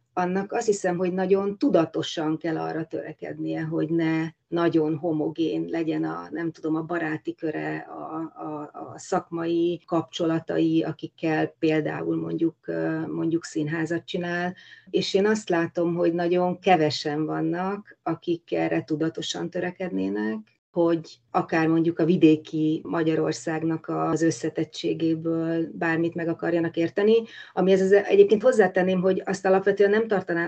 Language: Hungarian